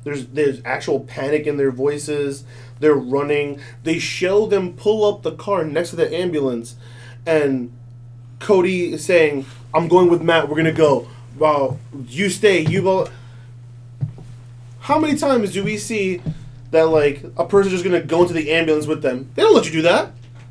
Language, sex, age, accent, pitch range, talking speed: English, male, 20-39, American, 120-175 Hz, 180 wpm